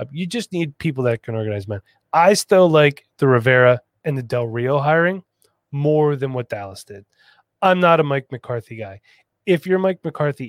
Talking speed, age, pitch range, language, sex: 190 wpm, 20-39, 120-170 Hz, English, male